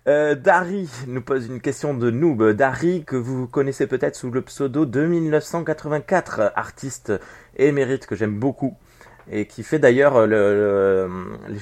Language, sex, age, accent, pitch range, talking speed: French, male, 30-49, French, 120-160 Hz, 150 wpm